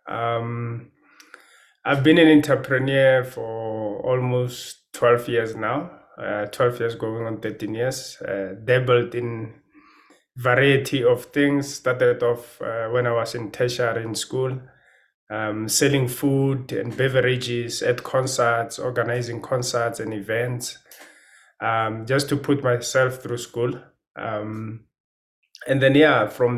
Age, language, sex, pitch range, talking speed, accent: 20-39, English, male, 115-135 Hz, 125 wpm, South African